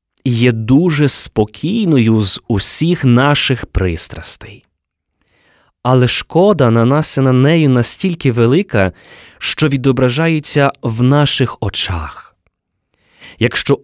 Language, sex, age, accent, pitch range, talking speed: Ukrainian, male, 20-39, native, 110-150 Hz, 95 wpm